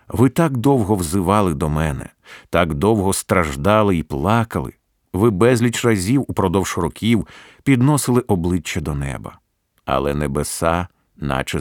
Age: 50-69